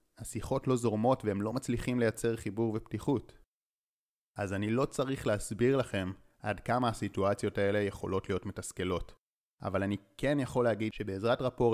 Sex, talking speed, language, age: male, 150 wpm, Hebrew, 30-49